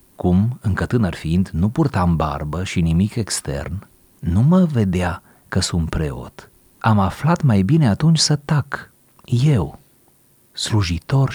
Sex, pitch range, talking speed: male, 90-115 Hz, 130 wpm